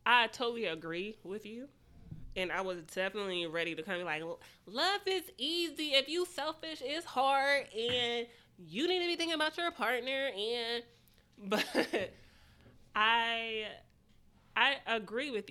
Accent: American